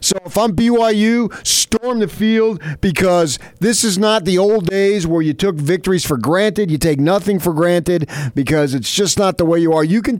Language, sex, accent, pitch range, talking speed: English, male, American, 125-170 Hz, 205 wpm